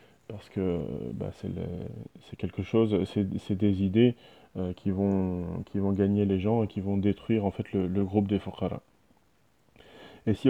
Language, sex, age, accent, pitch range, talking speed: French, male, 20-39, French, 100-110 Hz, 190 wpm